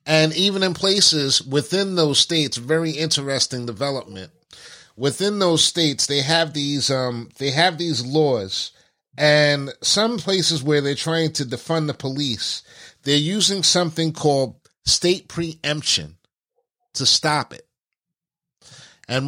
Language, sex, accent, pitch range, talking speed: English, male, American, 135-165 Hz, 130 wpm